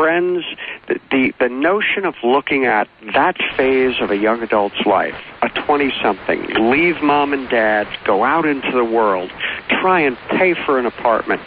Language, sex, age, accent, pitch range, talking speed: English, male, 50-69, American, 105-140 Hz, 160 wpm